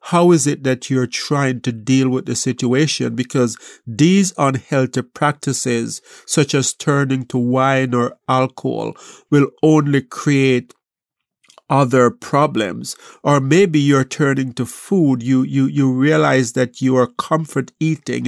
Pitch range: 125-150 Hz